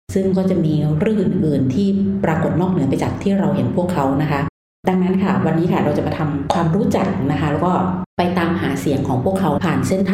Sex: female